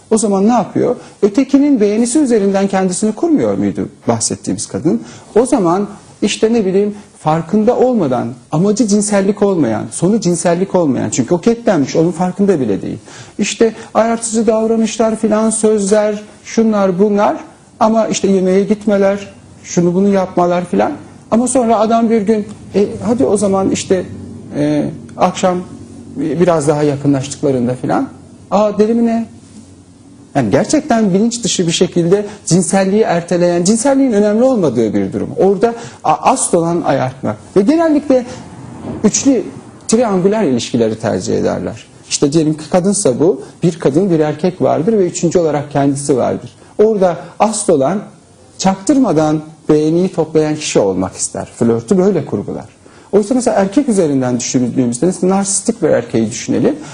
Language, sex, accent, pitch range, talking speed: Turkish, male, native, 155-220 Hz, 130 wpm